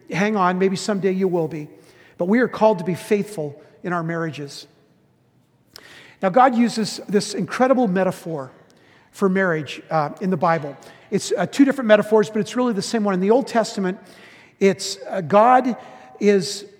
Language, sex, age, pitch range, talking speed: English, male, 50-69, 170-210 Hz, 170 wpm